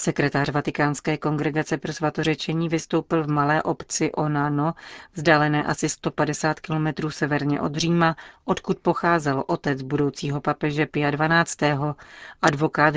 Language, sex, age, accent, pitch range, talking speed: Czech, female, 40-59, native, 145-170 Hz, 110 wpm